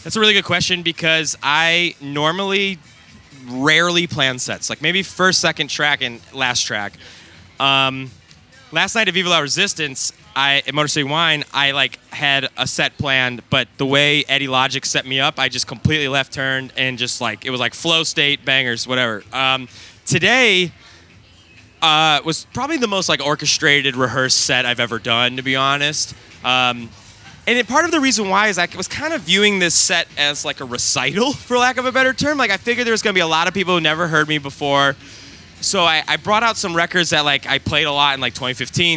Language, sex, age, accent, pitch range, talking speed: English, male, 20-39, American, 130-175 Hz, 210 wpm